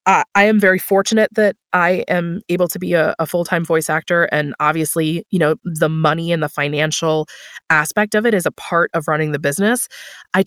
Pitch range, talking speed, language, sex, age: 155-195 Hz, 205 wpm, English, female, 20-39